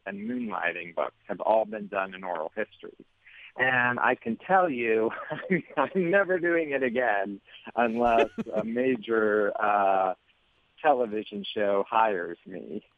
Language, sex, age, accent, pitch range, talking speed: English, male, 40-59, American, 105-130 Hz, 130 wpm